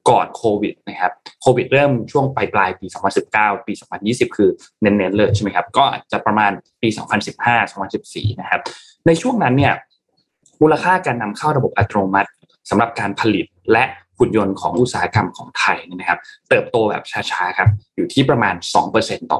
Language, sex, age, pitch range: Thai, male, 20-39, 105-140 Hz